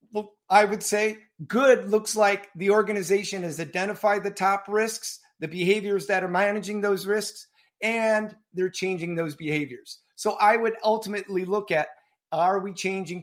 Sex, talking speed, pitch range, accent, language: male, 155 wpm, 170-210 Hz, American, English